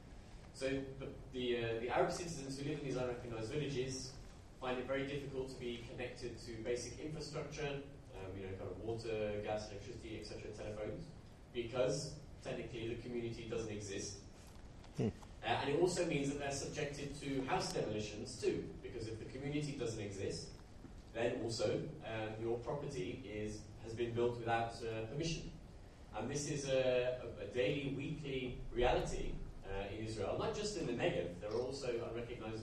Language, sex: English, male